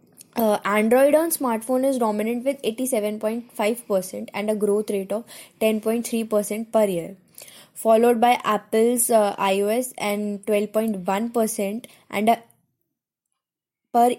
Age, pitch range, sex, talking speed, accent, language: 20-39, 195-235 Hz, female, 110 wpm, Indian, English